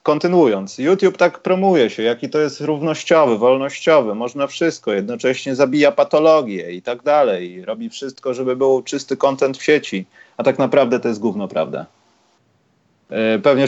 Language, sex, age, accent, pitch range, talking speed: Polish, male, 30-49, native, 115-155 Hz, 150 wpm